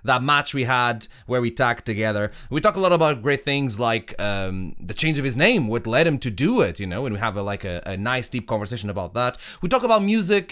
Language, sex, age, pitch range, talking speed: English, male, 30-49, 100-135 Hz, 260 wpm